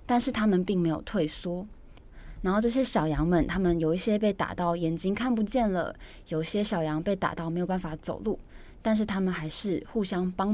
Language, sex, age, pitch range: Chinese, female, 20-39, 170-215 Hz